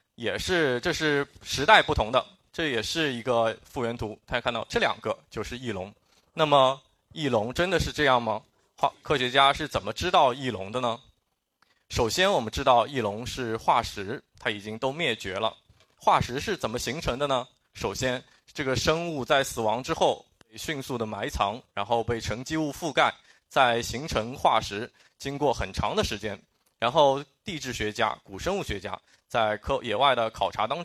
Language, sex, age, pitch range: Chinese, male, 20-39, 110-140 Hz